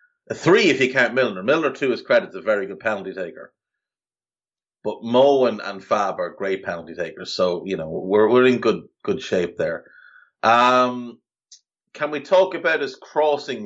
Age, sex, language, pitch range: 30-49, male, English, 100-135 Hz